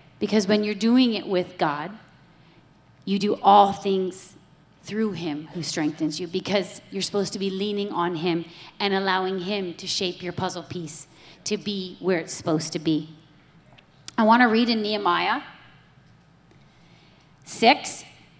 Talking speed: 150 wpm